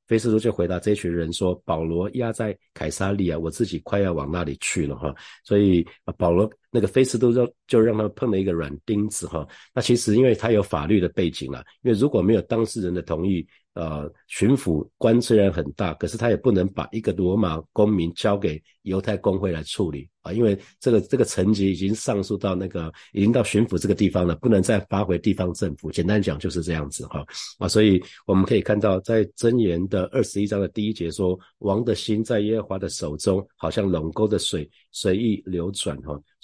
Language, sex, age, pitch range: Chinese, male, 50-69, 85-110 Hz